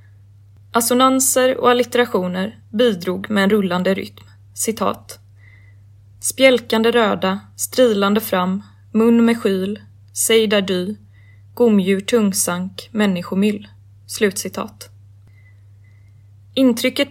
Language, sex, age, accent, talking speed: Swedish, female, 20-39, native, 75 wpm